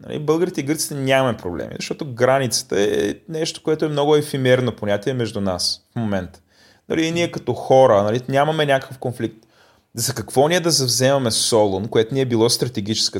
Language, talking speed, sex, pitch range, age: Bulgarian, 175 wpm, male, 110-145 Hz, 30-49